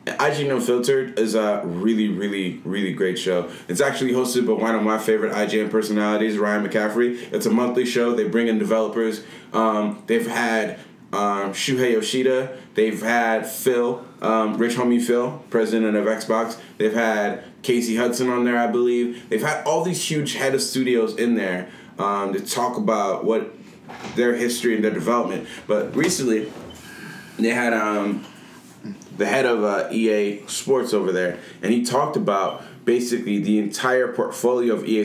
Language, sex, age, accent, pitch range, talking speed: English, male, 20-39, American, 105-120 Hz, 165 wpm